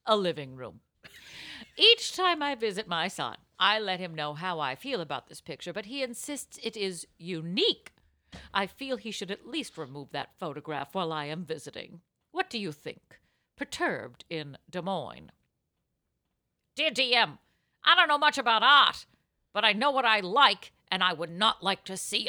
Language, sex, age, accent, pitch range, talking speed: English, female, 50-69, American, 170-255 Hz, 180 wpm